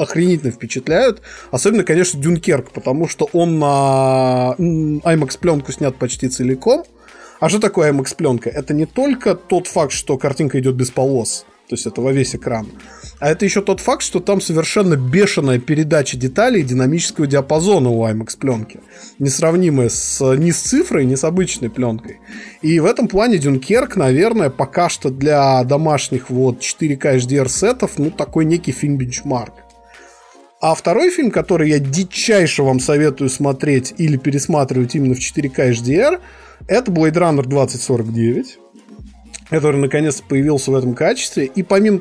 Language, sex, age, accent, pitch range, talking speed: Russian, male, 20-39, native, 130-180 Hz, 145 wpm